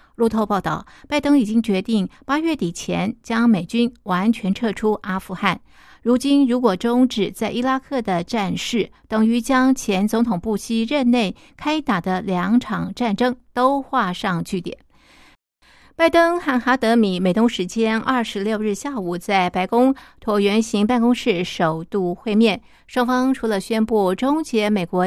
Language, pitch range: Chinese, 190-245 Hz